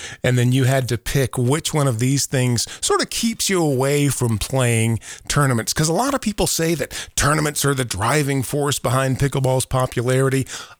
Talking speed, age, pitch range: 190 wpm, 40-59, 115-150 Hz